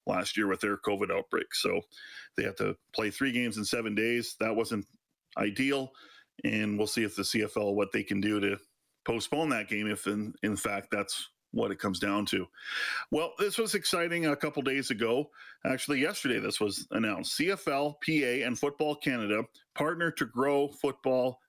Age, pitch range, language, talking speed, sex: 40-59, 115-145 Hz, English, 185 wpm, male